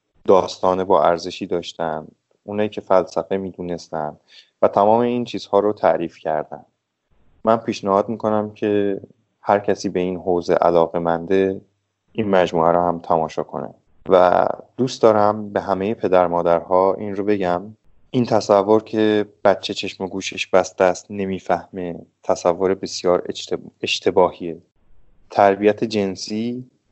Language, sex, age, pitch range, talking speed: Persian, male, 20-39, 90-105 Hz, 125 wpm